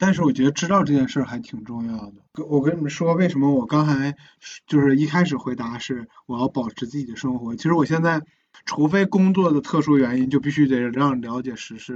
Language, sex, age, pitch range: Chinese, male, 20-39, 130-165 Hz